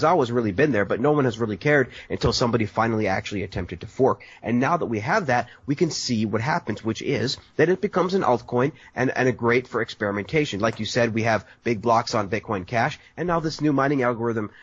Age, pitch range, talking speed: 30-49, 105-130 Hz, 235 wpm